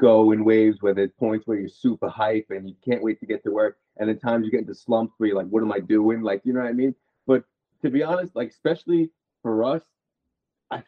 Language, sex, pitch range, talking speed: English, male, 115-165 Hz, 260 wpm